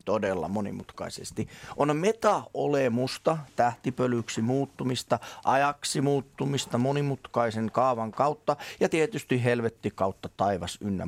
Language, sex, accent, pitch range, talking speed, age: Finnish, male, native, 110-145 Hz, 90 wpm, 30-49